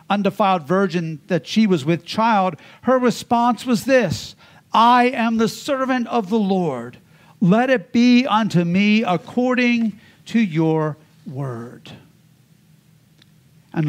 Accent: American